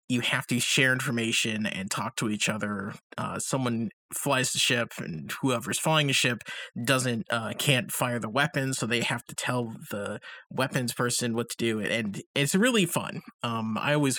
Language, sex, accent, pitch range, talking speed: English, male, American, 120-150 Hz, 185 wpm